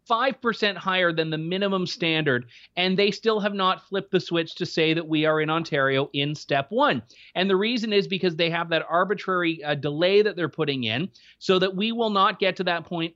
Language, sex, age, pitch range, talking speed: English, male, 30-49, 160-200 Hz, 215 wpm